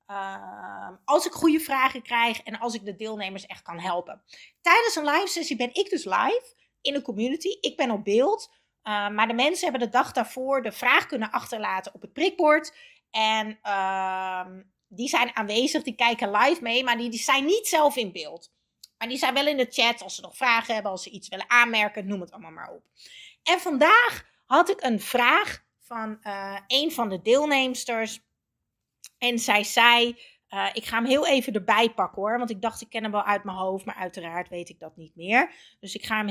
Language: Dutch